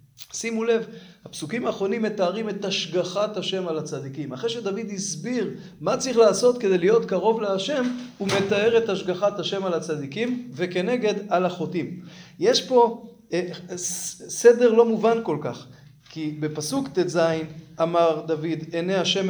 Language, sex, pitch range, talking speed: Hebrew, male, 165-225 Hz, 135 wpm